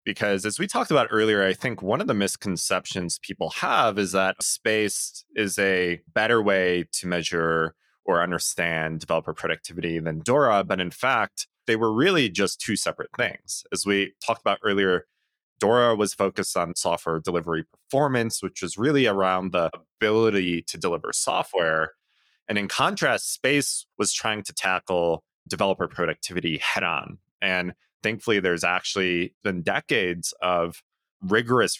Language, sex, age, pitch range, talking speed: English, male, 20-39, 80-105 Hz, 150 wpm